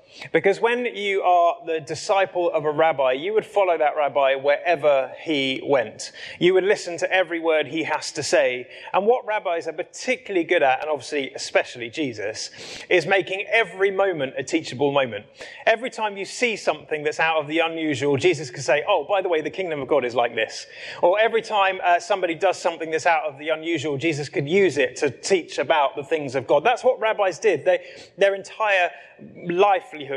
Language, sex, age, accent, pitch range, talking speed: English, male, 30-49, British, 155-200 Hz, 200 wpm